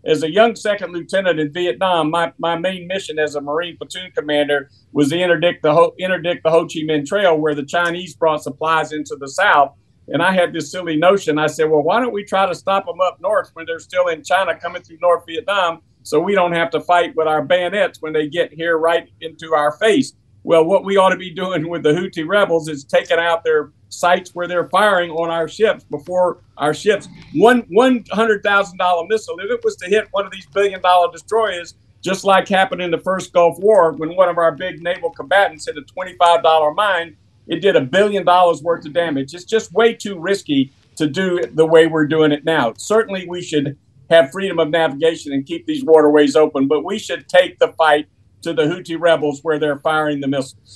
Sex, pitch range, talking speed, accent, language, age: male, 155-190 Hz, 215 wpm, American, English, 50-69